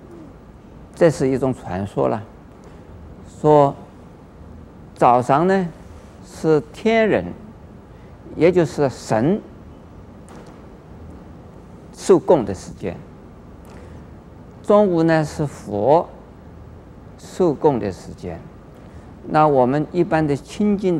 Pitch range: 95-155 Hz